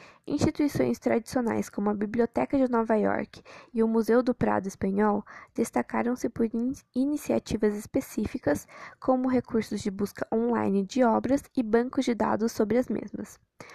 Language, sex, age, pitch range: Portuguese, female, 10-29, 210-250 Hz